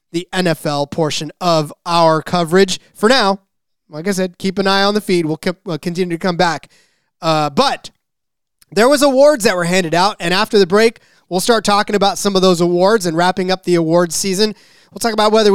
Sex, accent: male, American